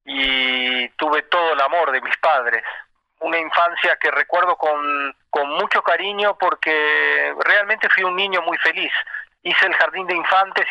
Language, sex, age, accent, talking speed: Spanish, male, 40-59, Argentinian, 155 wpm